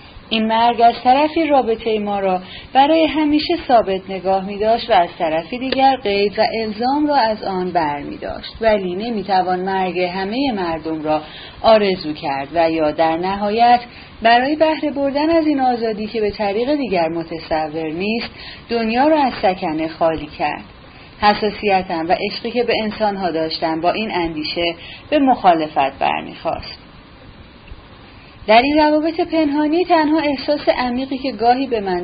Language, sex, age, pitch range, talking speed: Persian, female, 30-49, 185-265 Hz, 145 wpm